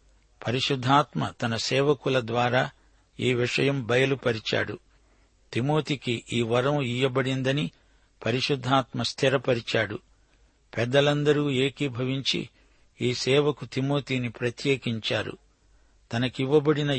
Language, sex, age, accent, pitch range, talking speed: Telugu, male, 60-79, native, 120-145 Hz, 70 wpm